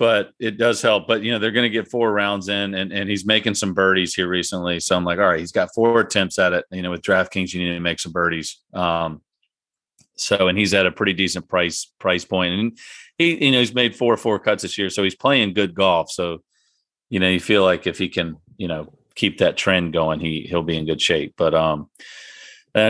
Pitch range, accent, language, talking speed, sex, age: 90-115 Hz, American, English, 250 wpm, male, 40-59